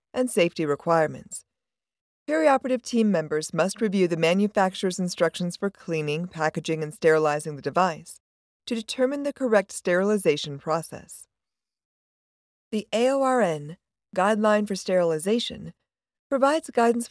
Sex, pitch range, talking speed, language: female, 165-225 Hz, 110 wpm, English